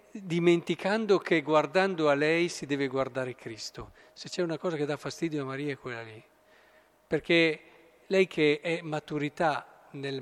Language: Italian